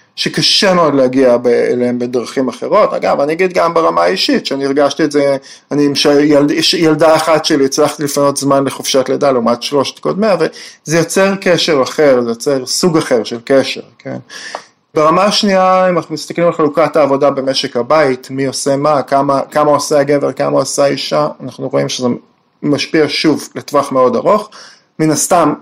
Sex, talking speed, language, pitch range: male, 170 wpm, Hebrew, 130-160 Hz